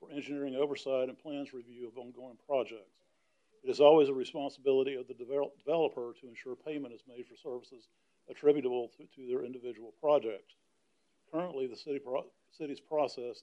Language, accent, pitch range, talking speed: English, American, 125-165 Hz, 150 wpm